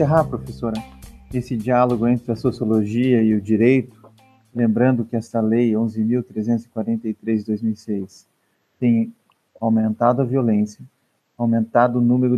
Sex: male